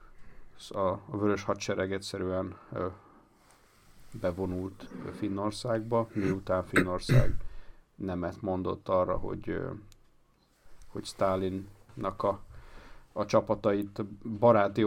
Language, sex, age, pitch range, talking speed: Hungarian, male, 50-69, 95-110 Hz, 75 wpm